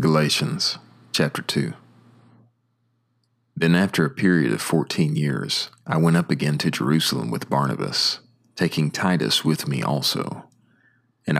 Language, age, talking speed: English, 40-59, 125 wpm